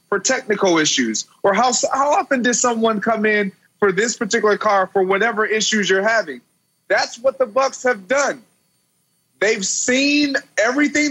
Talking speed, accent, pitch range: 155 wpm, American, 195-250 Hz